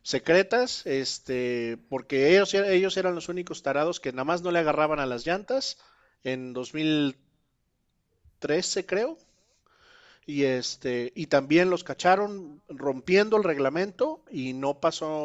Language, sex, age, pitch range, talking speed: Spanish, male, 40-59, 130-170 Hz, 130 wpm